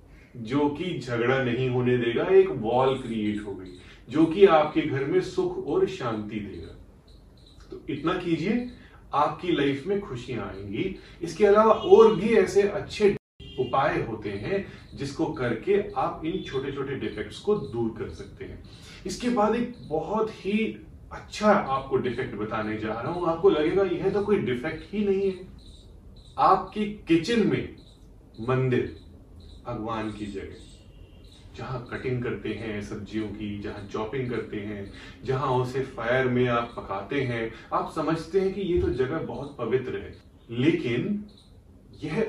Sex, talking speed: male, 150 wpm